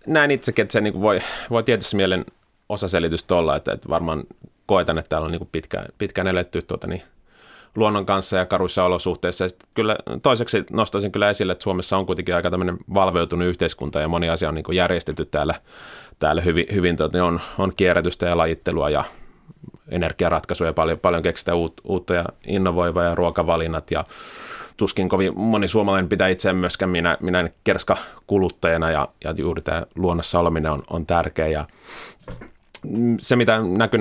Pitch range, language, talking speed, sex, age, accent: 85-95 Hz, Finnish, 165 wpm, male, 30-49, native